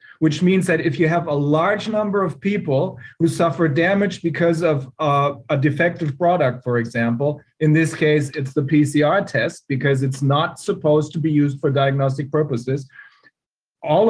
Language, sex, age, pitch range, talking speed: English, male, 40-59, 145-185 Hz, 170 wpm